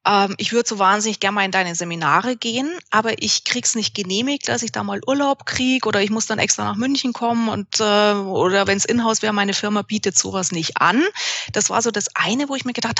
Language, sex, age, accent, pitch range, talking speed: German, female, 30-49, German, 195-235 Hz, 235 wpm